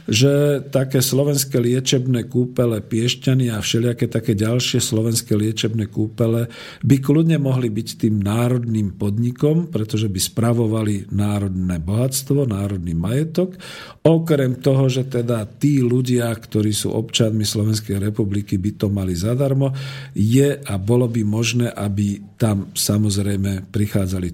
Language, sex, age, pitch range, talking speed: Slovak, male, 50-69, 105-125 Hz, 125 wpm